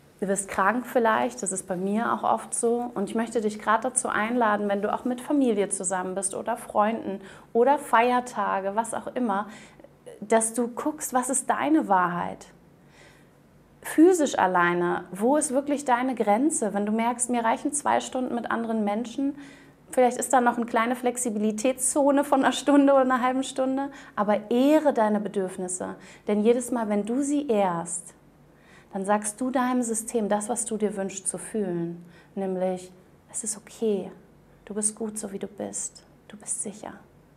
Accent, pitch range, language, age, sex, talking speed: German, 200-245 Hz, German, 30-49, female, 170 wpm